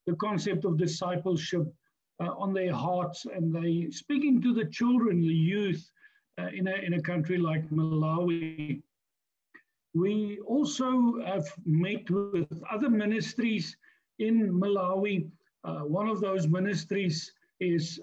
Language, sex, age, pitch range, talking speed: English, male, 50-69, 165-210 Hz, 130 wpm